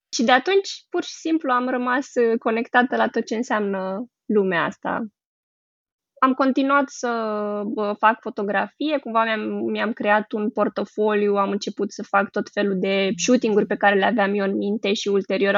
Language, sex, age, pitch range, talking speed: Romanian, female, 20-39, 205-255 Hz, 160 wpm